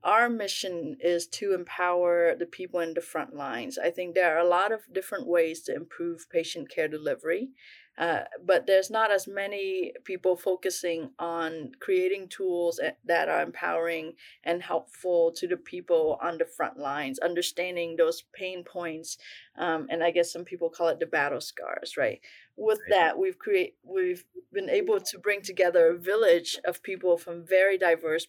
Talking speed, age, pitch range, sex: 170 wpm, 30-49, 170-220 Hz, female